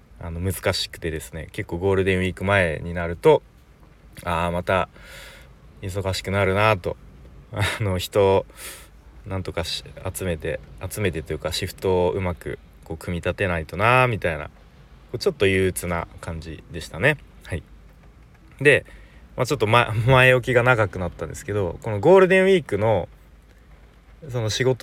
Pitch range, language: 80-115 Hz, Japanese